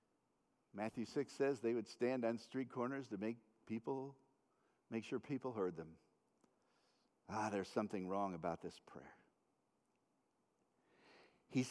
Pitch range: 115-190 Hz